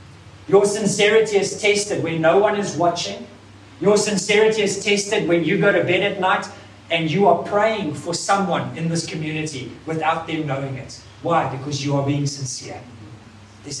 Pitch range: 145-195 Hz